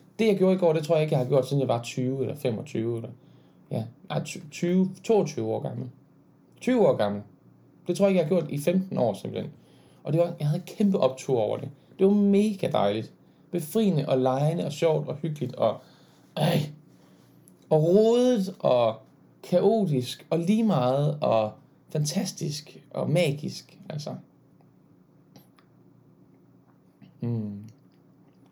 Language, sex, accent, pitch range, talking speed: Danish, male, native, 120-170 Hz, 155 wpm